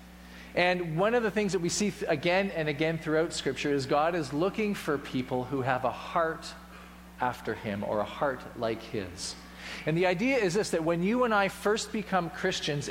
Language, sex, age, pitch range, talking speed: English, male, 40-59, 110-175 Hz, 200 wpm